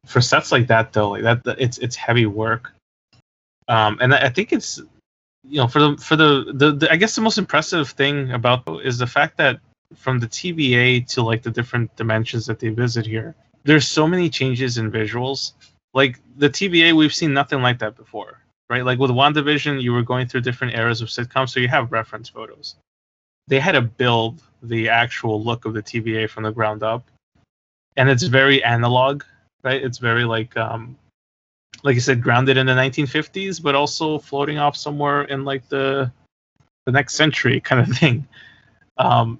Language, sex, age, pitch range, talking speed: English, male, 20-39, 115-140 Hz, 190 wpm